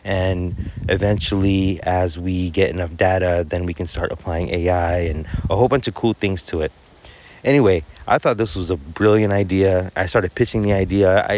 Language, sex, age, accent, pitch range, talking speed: English, male, 30-49, American, 90-110 Hz, 190 wpm